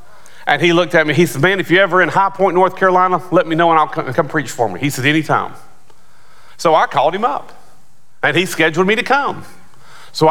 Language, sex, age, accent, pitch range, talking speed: English, male, 40-59, American, 140-180 Hz, 240 wpm